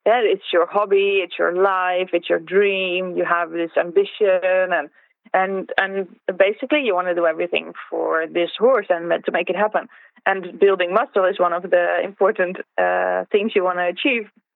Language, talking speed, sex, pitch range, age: English, 185 wpm, female, 180-225 Hz, 20-39